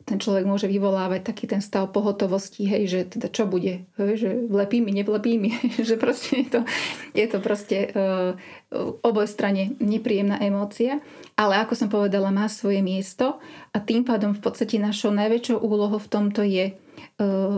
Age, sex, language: 30-49, female, Slovak